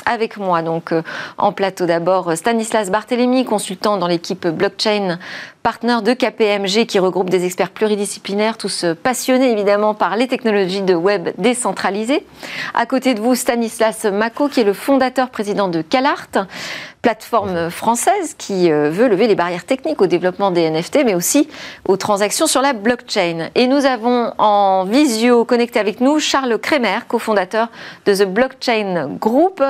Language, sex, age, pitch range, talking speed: French, female, 40-59, 195-255 Hz, 150 wpm